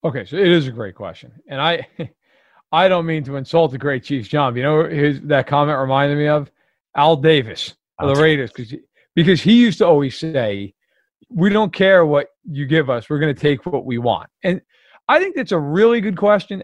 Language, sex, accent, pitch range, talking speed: English, male, American, 140-190 Hz, 215 wpm